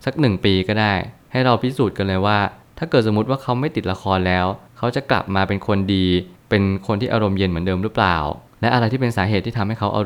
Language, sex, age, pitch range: Thai, male, 20-39, 95-115 Hz